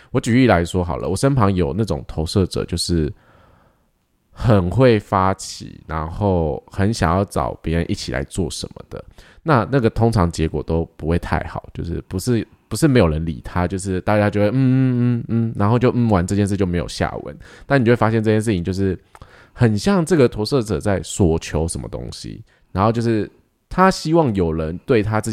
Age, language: 20-39, Chinese